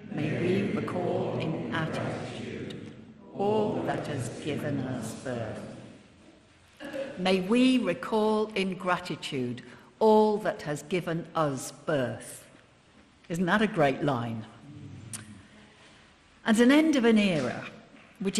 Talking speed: 110 wpm